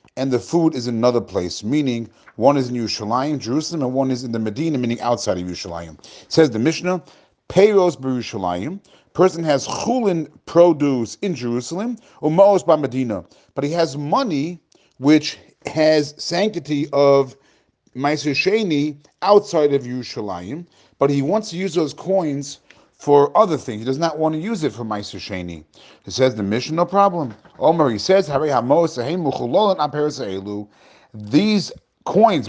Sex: male